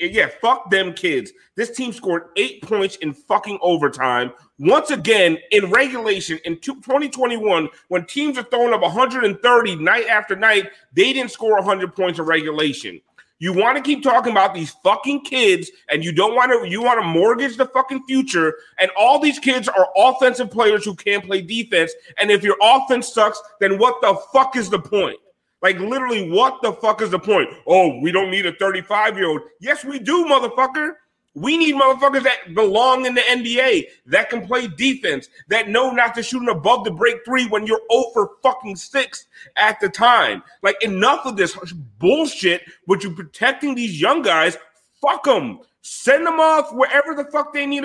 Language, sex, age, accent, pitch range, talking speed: English, male, 30-49, American, 195-265 Hz, 185 wpm